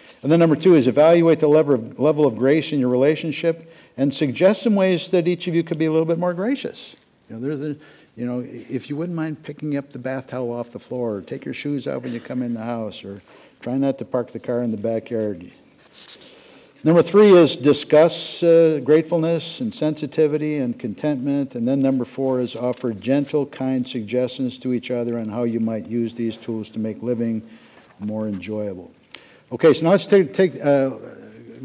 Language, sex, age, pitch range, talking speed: English, male, 50-69, 120-160 Hz, 210 wpm